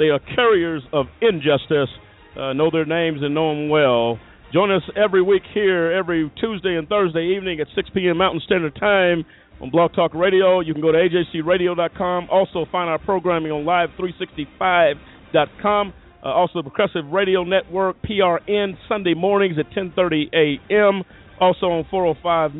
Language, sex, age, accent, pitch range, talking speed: English, male, 50-69, American, 145-180 Hz, 155 wpm